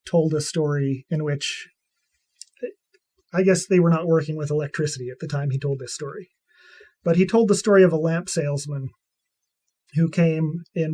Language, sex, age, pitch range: English, male, 30-49, 155-195 Hz